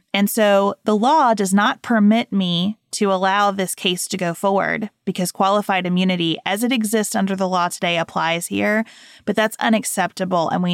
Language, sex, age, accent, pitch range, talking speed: English, female, 30-49, American, 190-230 Hz, 180 wpm